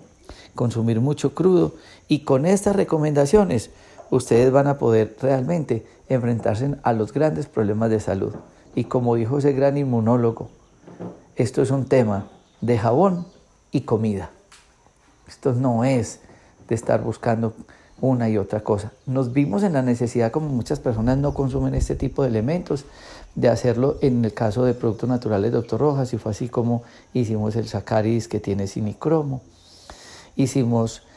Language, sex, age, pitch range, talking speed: Spanish, male, 50-69, 110-140 Hz, 150 wpm